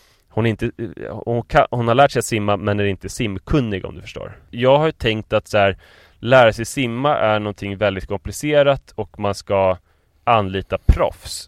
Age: 20-39